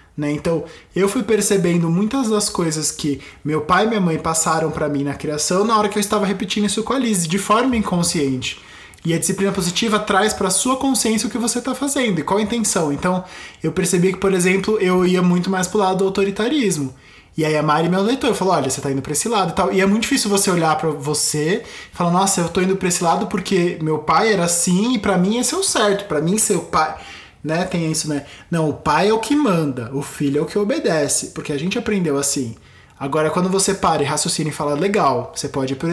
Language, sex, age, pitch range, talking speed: Portuguese, male, 20-39, 150-195 Hz, 250 wpm